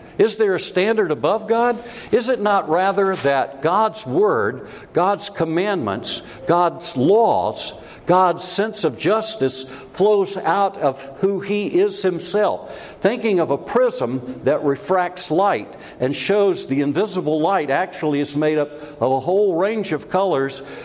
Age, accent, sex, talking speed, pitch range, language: 60-79, American, male, 145 wpm, 150-205 Hz, English